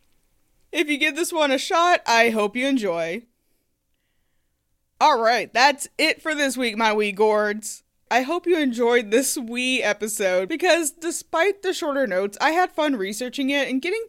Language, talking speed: English, 165 wpm